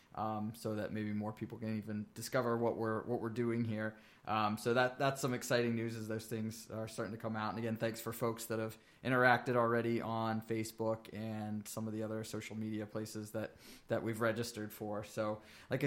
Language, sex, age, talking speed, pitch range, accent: English, male, 20-39, 210 wpm, 110-120 Hz, American